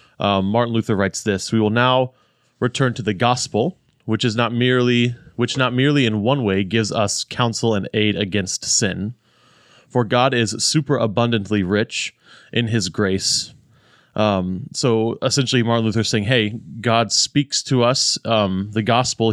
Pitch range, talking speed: 105-125 Hz, 165 wpm